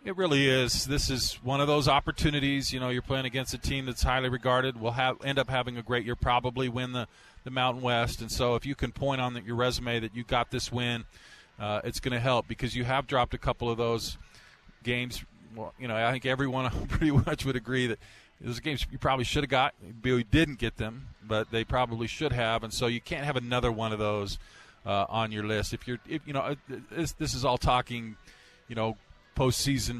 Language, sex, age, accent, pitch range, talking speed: English, male, 40-59, American, 115-130 Hz, 230 wpm